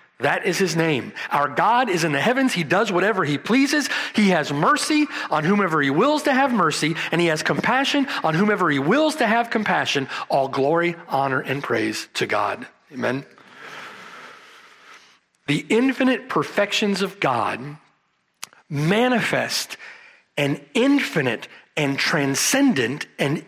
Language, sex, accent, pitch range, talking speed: English, male, American, 155-235 Hz, 140 wpm